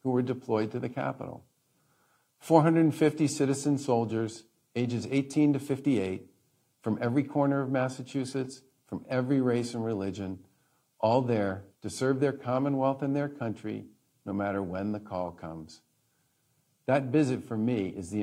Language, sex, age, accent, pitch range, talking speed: English, male, 50-69, American, 90-125 Hz, 145 wpm